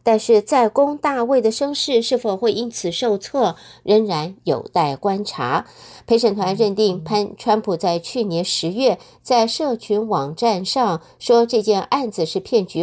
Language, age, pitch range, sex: Chinese, 50-69, 175-235 Hz, female